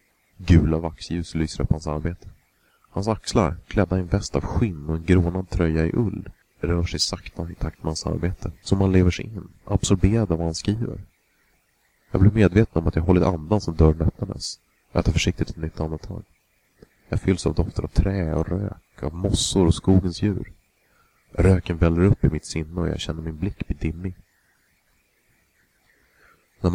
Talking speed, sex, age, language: 185 wpm, male, 30-49, Swedish